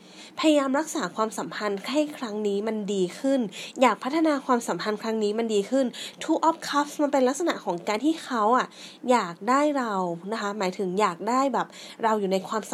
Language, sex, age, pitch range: Thai, female, 20-39, 195-260 Hz